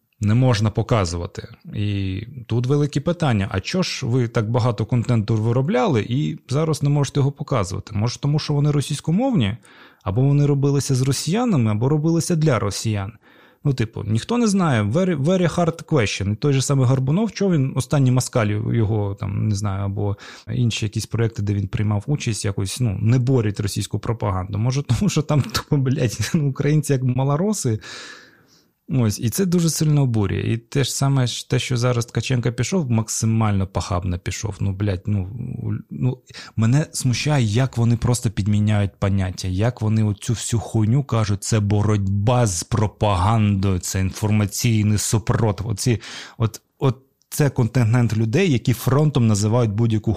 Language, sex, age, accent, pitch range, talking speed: Ukrainian, male, 20-39, native, 105-135 Hz, 155 wpm